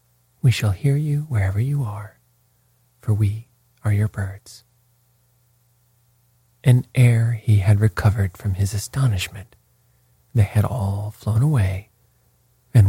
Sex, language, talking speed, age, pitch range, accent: male, English, 120 wpm, 40-59, 95-125 Hz, American